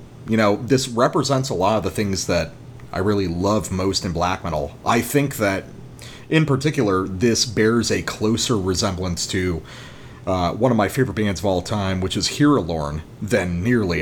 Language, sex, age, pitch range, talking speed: English, male, 30-49, 95-130 Hz, 180 wpm